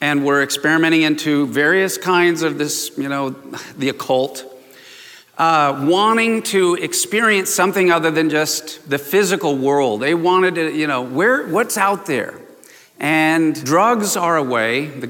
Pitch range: 140-190 Hz